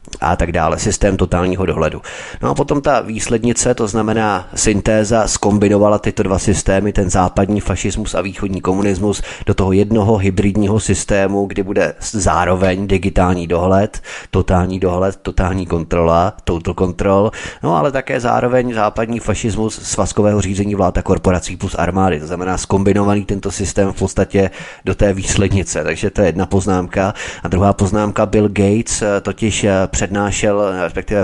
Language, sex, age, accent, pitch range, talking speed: Czech, male, 20-39, native, 95-105 Hz, 145 wpm